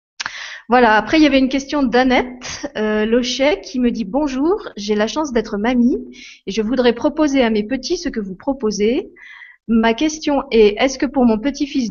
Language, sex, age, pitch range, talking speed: French, female, 30-49, 210-260 Hz, 195 wpm